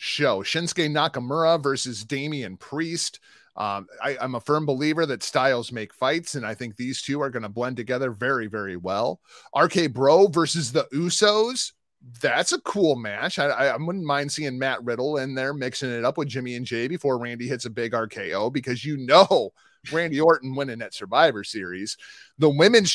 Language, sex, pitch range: English, male, 135-200 Hz